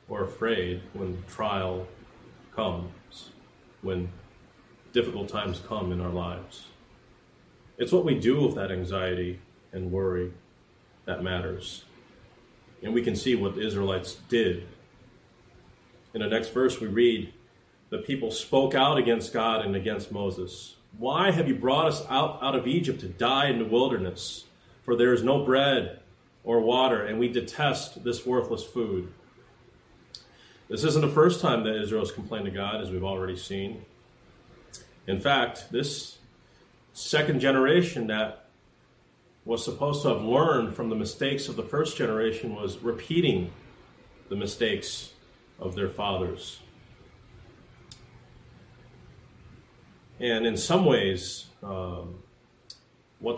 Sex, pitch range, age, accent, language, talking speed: male, 95-120 Hz, 30-49, American, English, 135 wpm